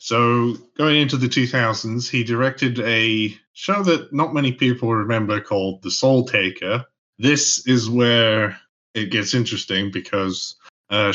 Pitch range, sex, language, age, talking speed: 95-120 Hz, male, English, 30-49, 140 wpm